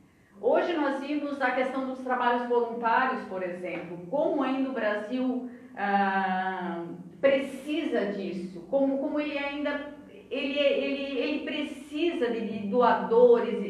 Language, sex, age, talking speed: Portuguese, female, 40-59, 105 wpm